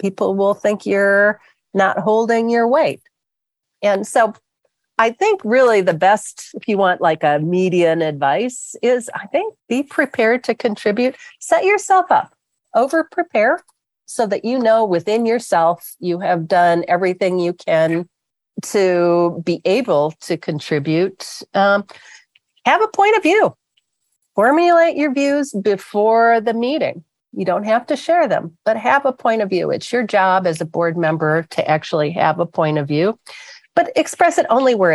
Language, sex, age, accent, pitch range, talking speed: English, female, 40-59, American, 170-240 Hz, 160 wpm